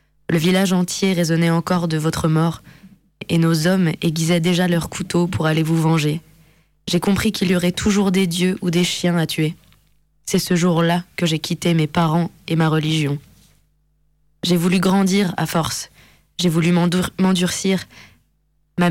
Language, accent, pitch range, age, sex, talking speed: French, French, 160-185 Hz, 20-39, female, 170 wpm